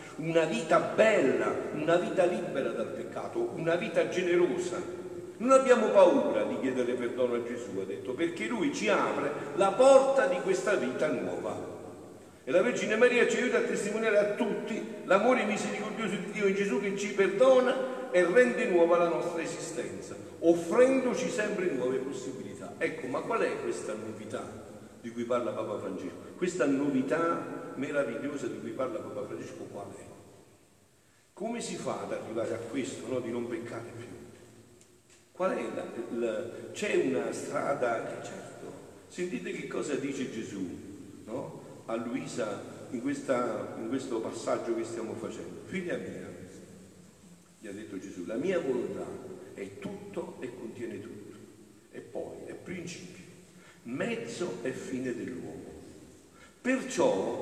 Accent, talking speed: native, 145 wpm